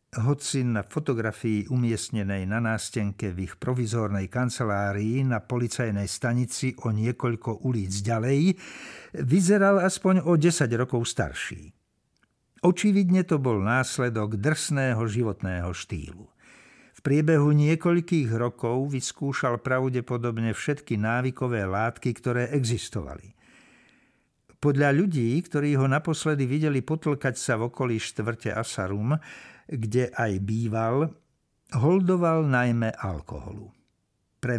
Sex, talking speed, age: male, 105 wpm, 60-79